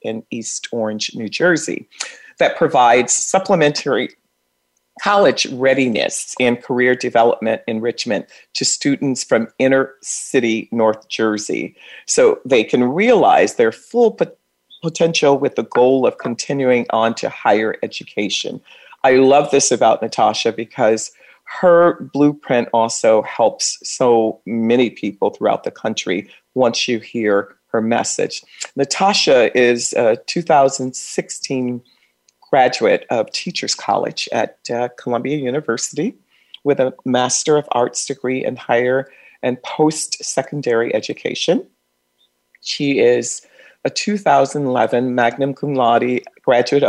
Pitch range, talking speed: 115-140 Hz, 115 wpm